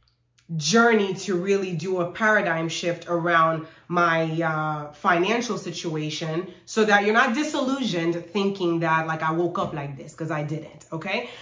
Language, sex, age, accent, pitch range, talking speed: English, female, 30-49, American, 165-205 Hz, 160 wpm